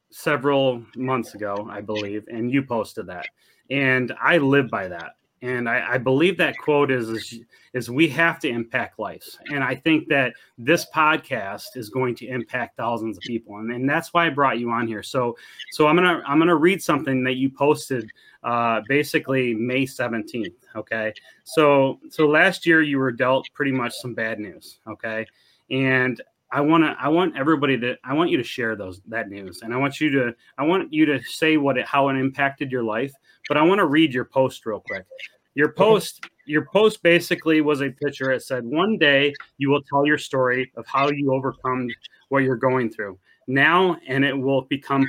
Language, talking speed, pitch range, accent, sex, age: English, 200 wpm, 120-150 Hz, American, male, 30-49